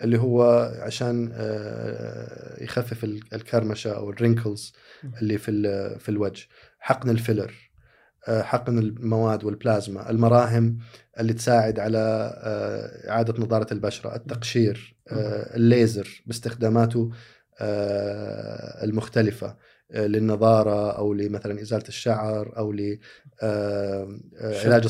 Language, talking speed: Arabic, 80 wpm